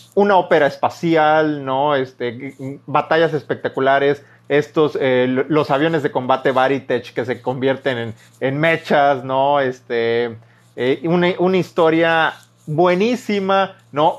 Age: 30-49